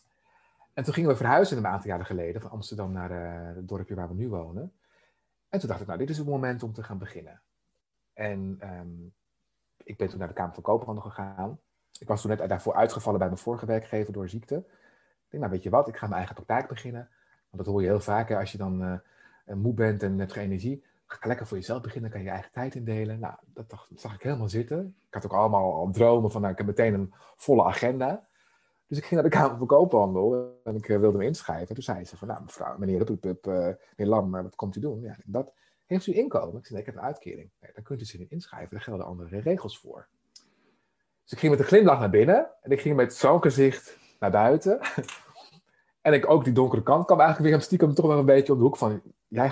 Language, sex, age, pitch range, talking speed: Dutch, male, 30-49, 100-140 Hz, 250 wpm